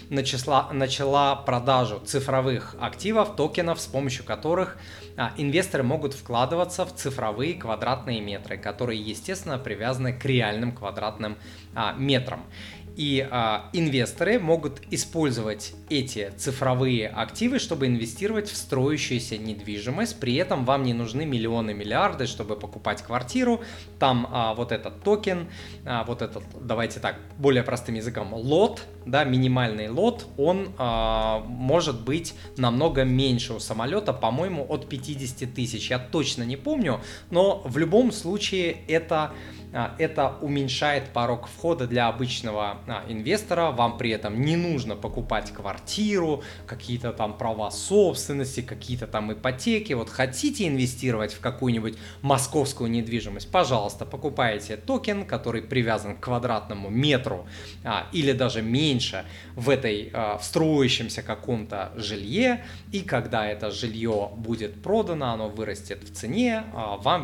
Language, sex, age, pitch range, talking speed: Russian, male, 20-39, 110-140 Hz, 120 wpm